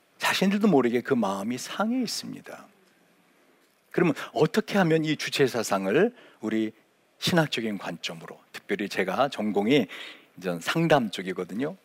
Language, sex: Korean, male